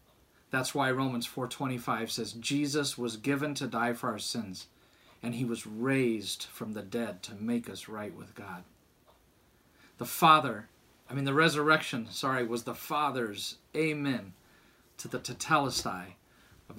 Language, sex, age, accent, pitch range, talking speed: English, male, 40-59, American, 110-140 Hz, 145 wpm